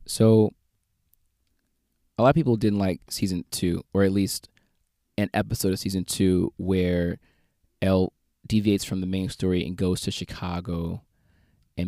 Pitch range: 90-110 Hz